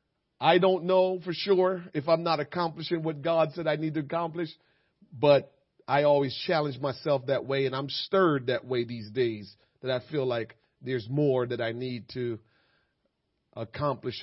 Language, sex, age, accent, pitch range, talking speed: English, male, 40-59, American, 125-155 Hz, 175 wpm